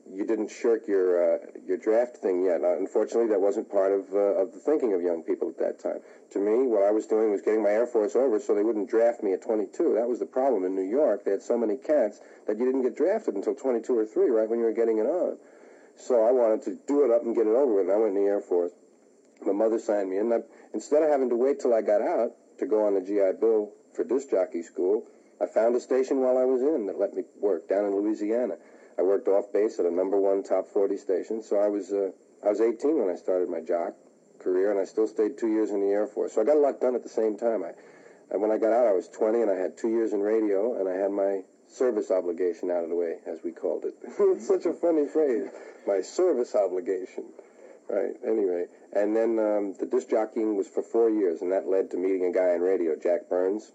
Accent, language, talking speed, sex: American, English, 265 wpm, male